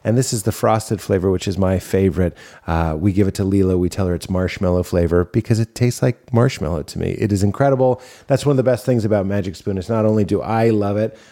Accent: American